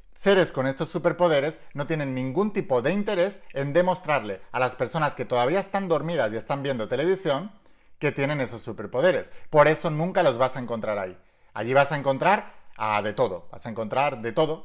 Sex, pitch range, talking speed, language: male, 120-165 Hz, 195 wpm, Spanish